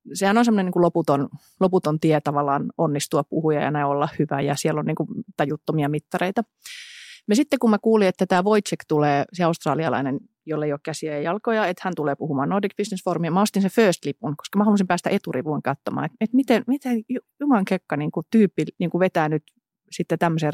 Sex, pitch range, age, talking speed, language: female, 155-225 Hz, 30-49, 190 wpm, Finnish